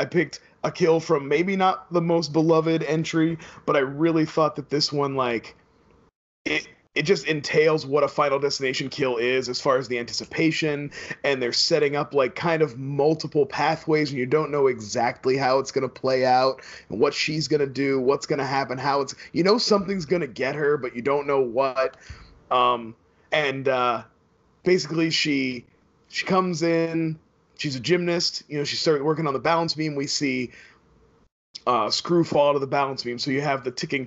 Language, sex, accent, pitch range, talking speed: English, male, American, 125-155 Hz, 200 wpm